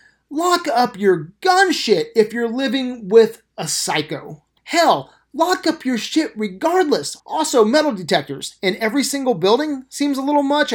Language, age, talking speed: English, 30-49, 155 wpm